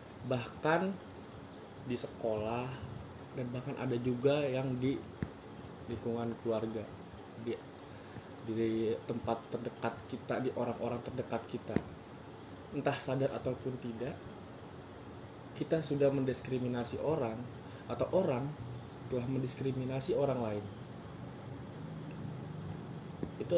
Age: 20-39